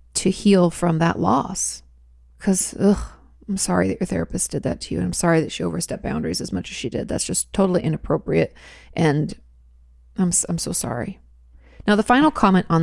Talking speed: 195 wpm